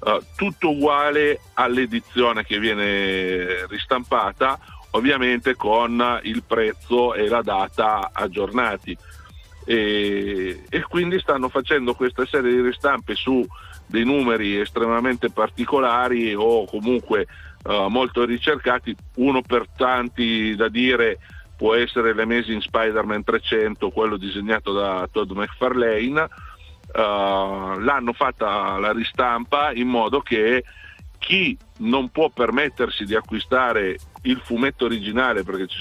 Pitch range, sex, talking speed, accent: 105-125 Hz, male, 110 wpm, native